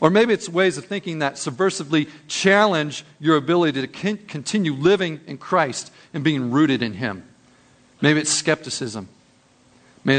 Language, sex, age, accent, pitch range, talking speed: English, male, 40-59, American, 135-175 Hz, 145 wpm